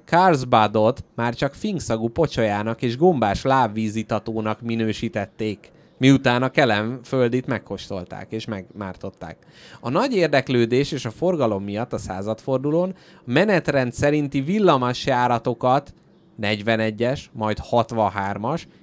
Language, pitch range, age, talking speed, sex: Hungarian, 110-135 Hz, 30-49, 95 wpm, male